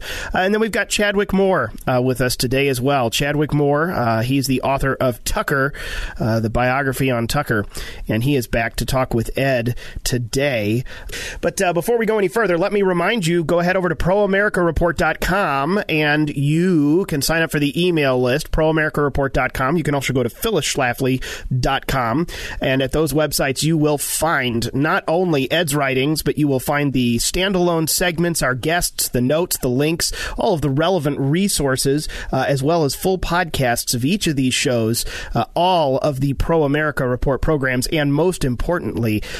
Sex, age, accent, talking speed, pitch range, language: male, 40-59, American, 180 wpm, 135-170 Hz, English